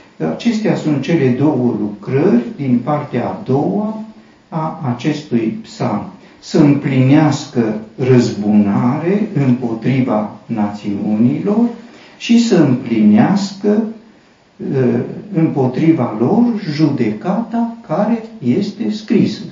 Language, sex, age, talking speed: Romanian, male, 50-69, 80 wpm